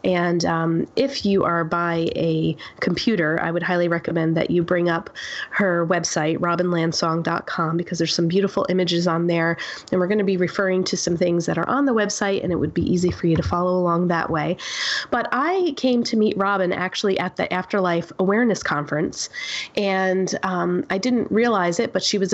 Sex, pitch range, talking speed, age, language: female, 170-210 Hz, 195 wpm, 30-49, English